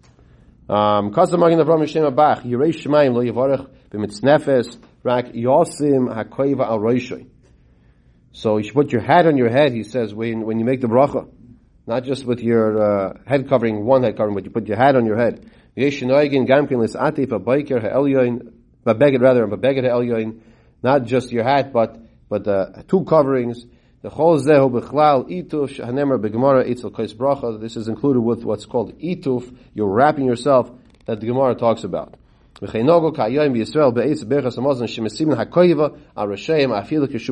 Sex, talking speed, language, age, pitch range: male, 100 wpm, English, 40-59, 110-140 Hz